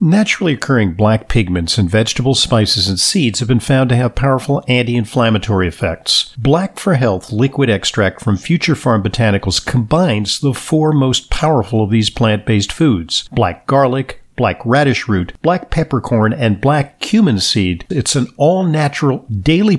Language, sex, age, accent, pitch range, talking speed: English, male, 50-69, American, 110-145 Hz, 150 wpm